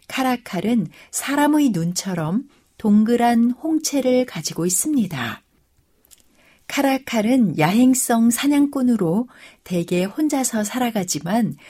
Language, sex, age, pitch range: Korean, female, 60-79, 180-250 Hz